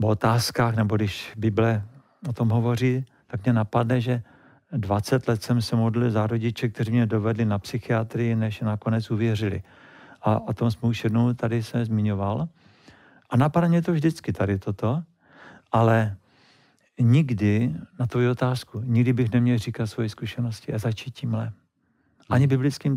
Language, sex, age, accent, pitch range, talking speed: Czech, male, 50-69, native, 115-130 Hz, 155 wpm